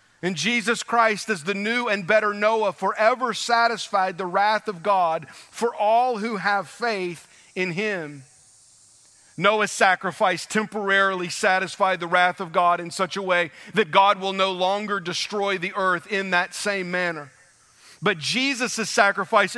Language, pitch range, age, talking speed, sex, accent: English, 185-230 Hz, 40-59, 150 wpm, male, American